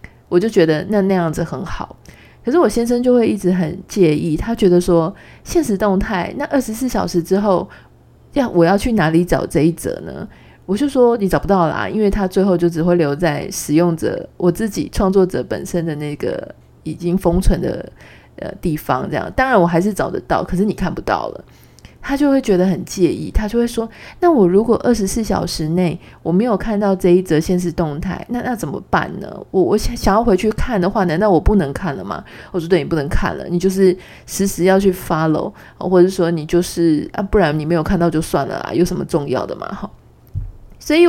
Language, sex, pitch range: Chinese, female, 170-215 Hz